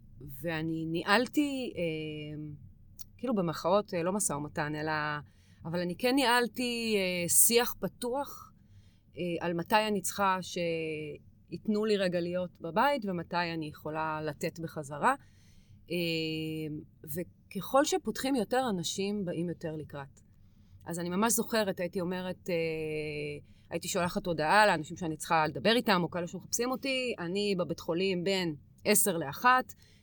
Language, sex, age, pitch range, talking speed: Hebrew, female, 30-49, 155-215 Hz, 120 wpm